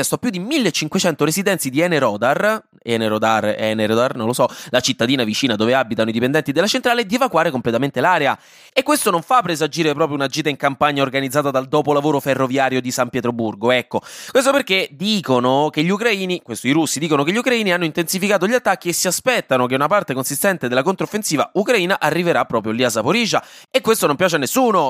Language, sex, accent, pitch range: Italian, male, native, 120-185 Hz